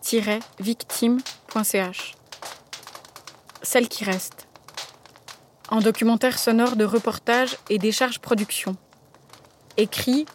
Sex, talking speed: female, 75 wpm